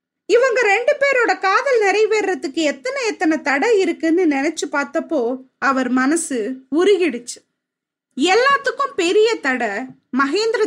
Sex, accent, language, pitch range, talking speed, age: female, native, Tamil, 280-385 Hz, 90 wpm, 20-39